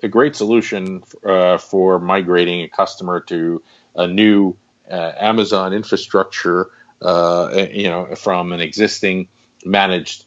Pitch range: 90-105 Hz